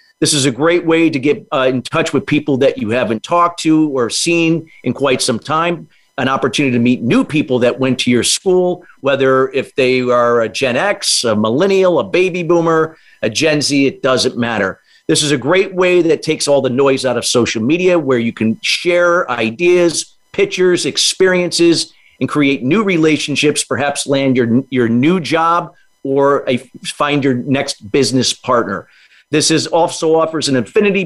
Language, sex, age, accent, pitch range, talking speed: English, male, 50-69, American, 130-170 Hz, 185 wpm